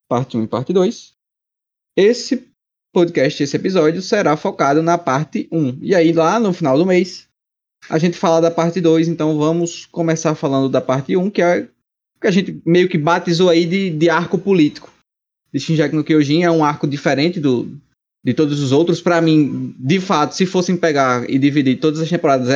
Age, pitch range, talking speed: 20-39, 140-175 Hz, 200 wpm